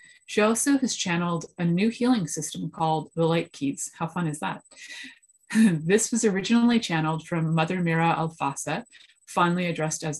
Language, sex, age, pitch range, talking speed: English, female, 30-49, 160-205 Hz, 160 wpm